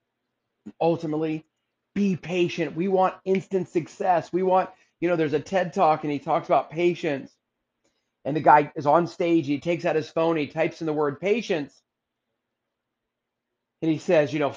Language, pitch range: English, 150-190 Hz